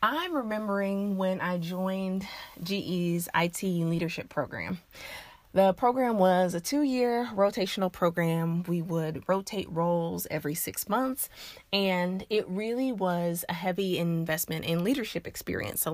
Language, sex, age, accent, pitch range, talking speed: English, female, 30-49, American, 170-215 Hz, 130 wpm